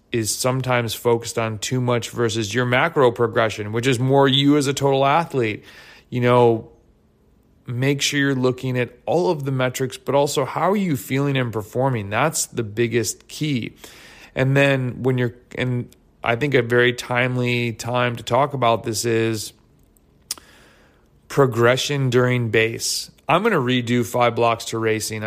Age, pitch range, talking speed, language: 30-49, 115-130 Hz, 160 wpm, English